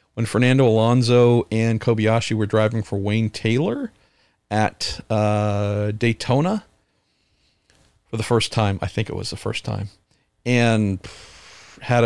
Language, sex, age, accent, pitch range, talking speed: English, male, 50-69, American, 100-115 Hz, 130 wpm